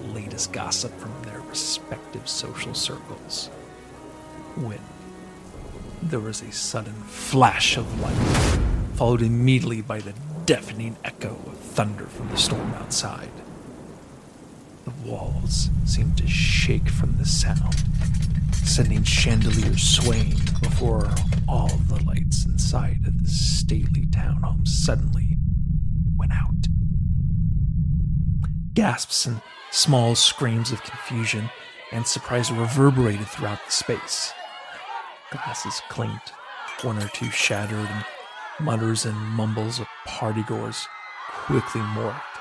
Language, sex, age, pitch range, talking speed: English, male, 40-59, 110-130 Hz, 110 wpm